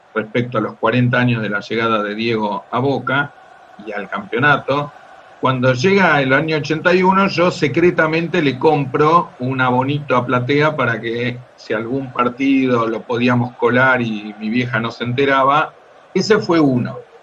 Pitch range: 120-175 Hz